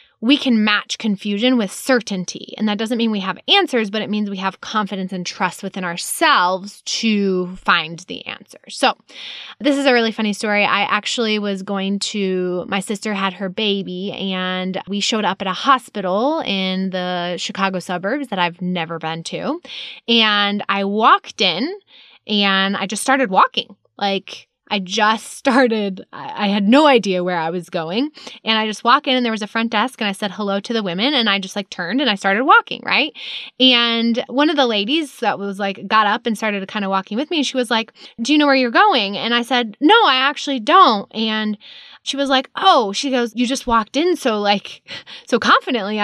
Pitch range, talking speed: 195-275 Hz, 205 wpm